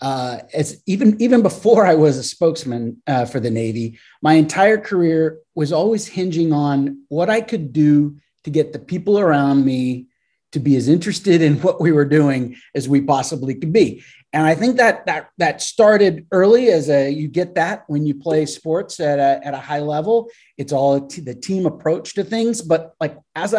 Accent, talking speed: American, 200 wpm